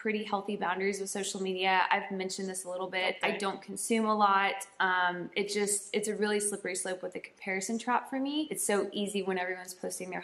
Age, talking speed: 20-39, 225 wpm